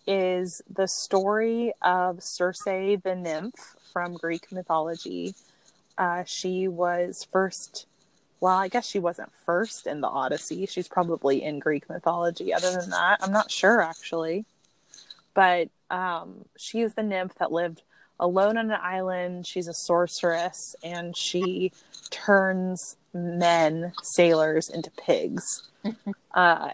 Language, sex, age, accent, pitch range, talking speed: English, female, 20-39, American, 170-190 Hz, 130 wpm